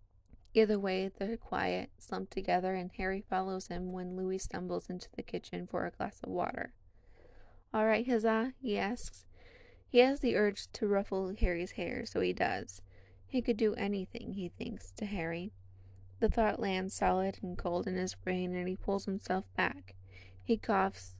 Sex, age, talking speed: female, 20-39, 175 wpm